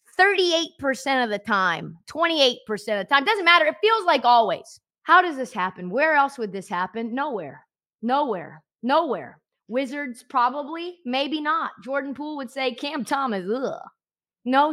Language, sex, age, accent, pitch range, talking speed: English, female, 20-39, American, 225-320 Hz, 150 wpm